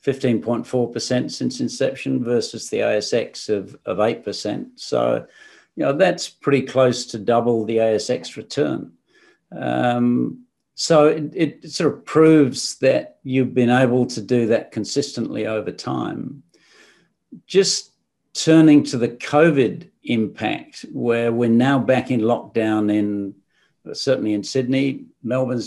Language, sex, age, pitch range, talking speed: English, male, 50-69, 115-145 Hz, 125 wpm